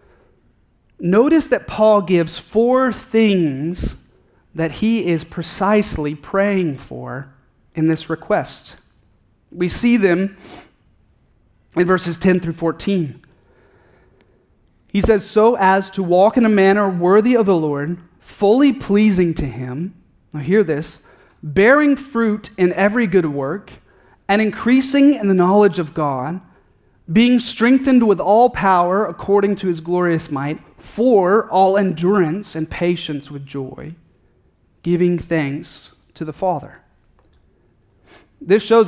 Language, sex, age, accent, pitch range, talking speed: English, male, 30-49, American, 165-210 Hz, 125 wpm